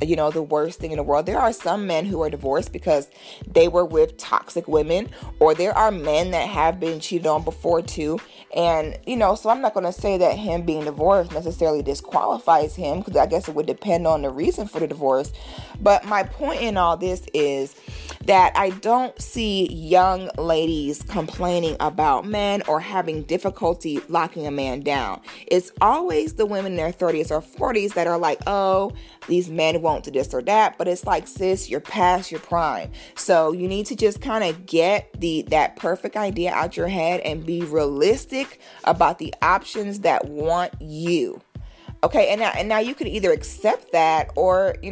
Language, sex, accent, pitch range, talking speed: English, female, American, 155-200 Hz, 195 wpm